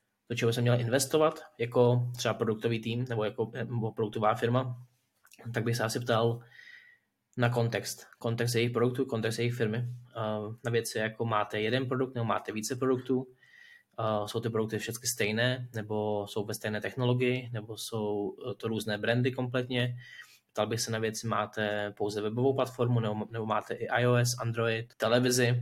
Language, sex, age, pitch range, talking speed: Czech, male, 20-39, 110-125 Hz, 160 wpm